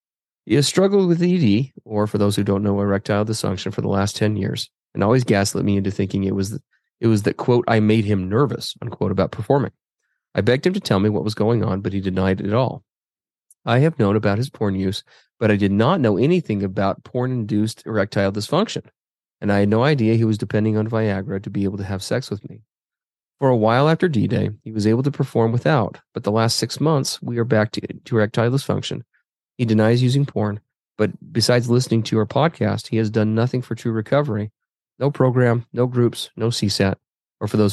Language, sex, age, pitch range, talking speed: English, male, 30-49, 100-125 Hz, 210 wpm